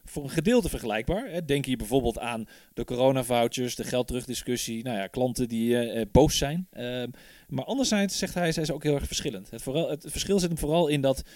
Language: Dutch